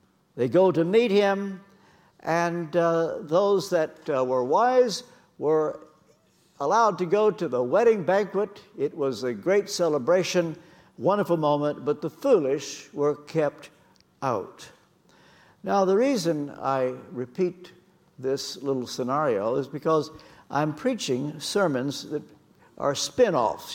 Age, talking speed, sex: 60-79, 125 wpm, male